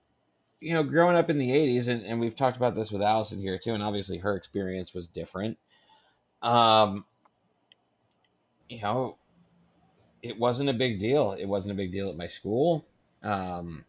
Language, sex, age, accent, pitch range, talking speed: English, male, 30-49, American, 90-115 Hz, 175 wpm